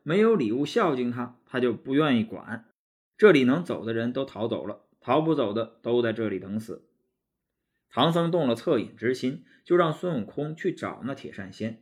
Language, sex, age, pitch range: Chinese, male, 20-39, 110-180 Hz